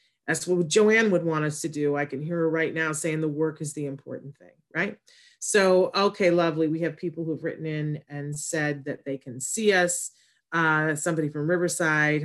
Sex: female